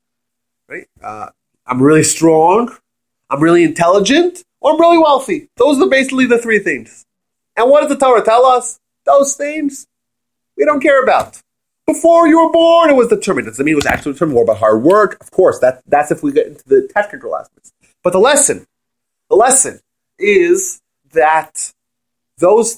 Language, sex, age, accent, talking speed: English, male, 30-49, American, 180 wpm